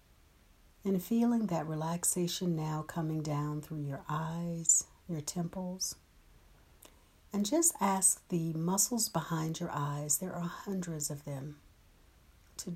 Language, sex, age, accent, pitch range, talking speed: English, female, 60-79, American, 130-175 Hz, 120 wpm